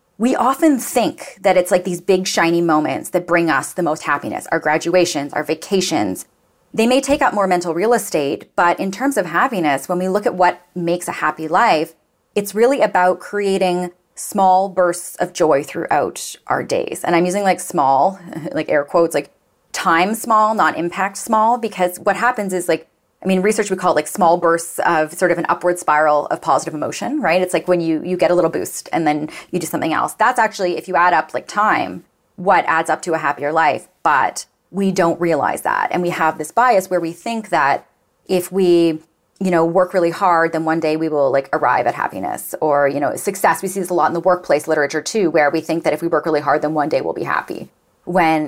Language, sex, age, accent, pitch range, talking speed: English, female, 30-49, American, 160-190 Hz, 225 wpm